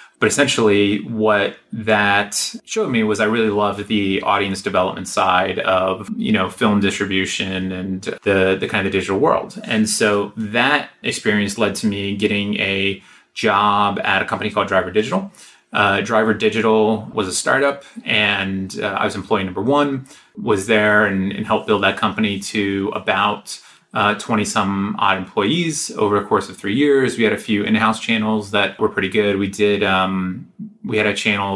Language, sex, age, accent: English, male, 30-49, American